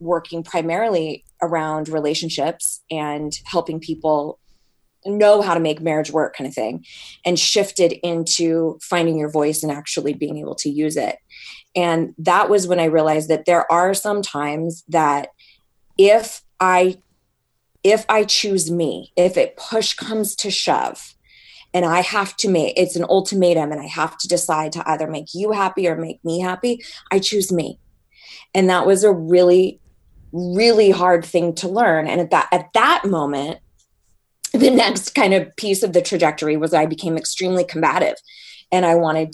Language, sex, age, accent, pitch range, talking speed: English, female, 20-39, American, 155-185 Hz, 170 wpm